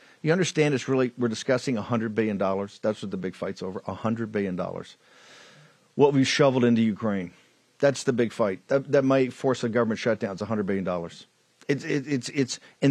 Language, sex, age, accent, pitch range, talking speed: English, male, 50-69, American, 120-150 Hz, 165 wpm